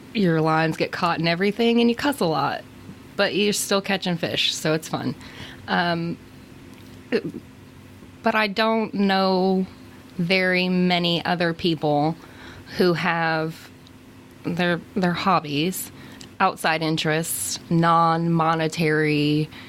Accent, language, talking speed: American, English, 115 wpm